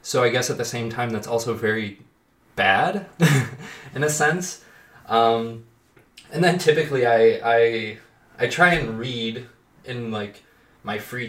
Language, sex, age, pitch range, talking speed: English, male, 20-39, 105-120 Hz, 150 wpm